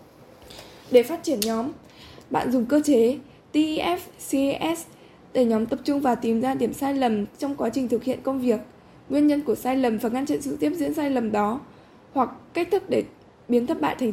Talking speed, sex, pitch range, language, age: 205 wpm, female, 235-290 Hz, Vietnamese, 10-29